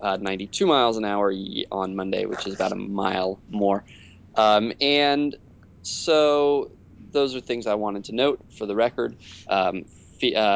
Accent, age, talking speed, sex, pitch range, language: American, 20-39, 160 wpm, male, 100-120 Hz, English